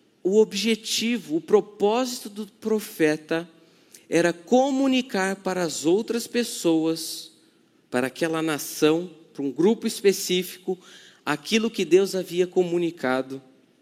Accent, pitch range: Brazilian, 165-210 Hz